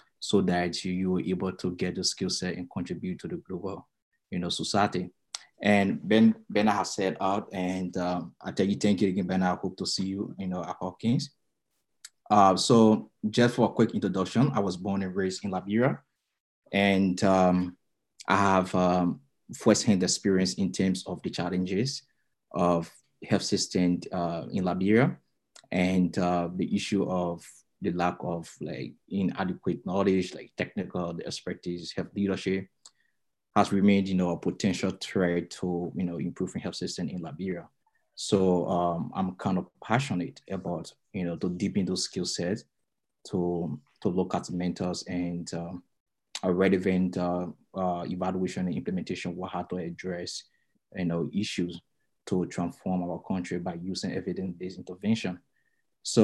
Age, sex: 20-39, male